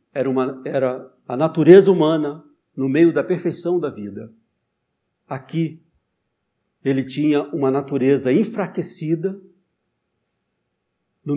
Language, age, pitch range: Portuguese, 60-79, 125-180 Hz